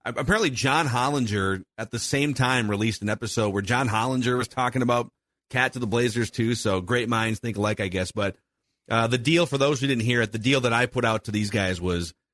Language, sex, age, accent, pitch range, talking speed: English, male, 30-49, American, 105-135 Hz, 235 wpm